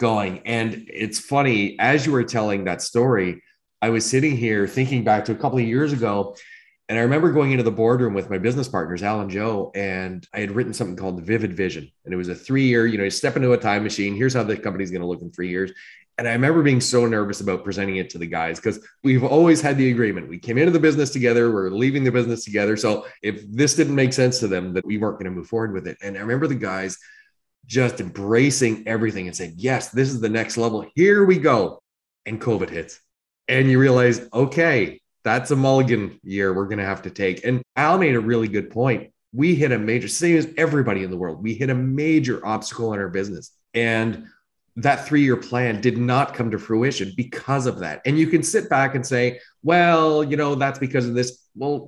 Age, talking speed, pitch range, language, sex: 30-49, 230 wpm, 105-135 Hz, English, male